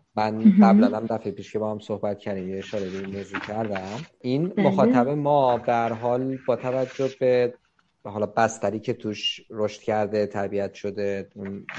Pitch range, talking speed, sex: 100-115 Hz, 150 wpm, male